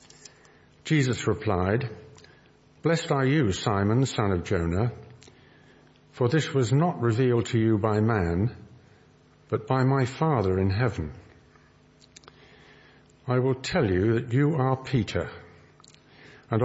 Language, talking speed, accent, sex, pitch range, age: English, 120 wpm, British, male, 100-140 Hz, 50-69